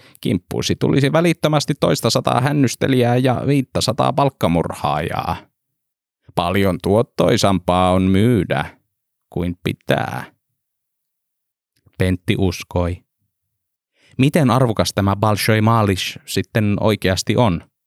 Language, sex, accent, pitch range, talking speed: Finnish, male, native, 90-120 Hz, 85 wpm